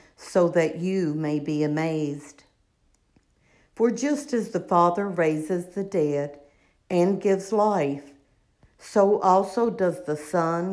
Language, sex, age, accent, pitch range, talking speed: English, female, 60-79, American, 150-190 Hz, 125 wpm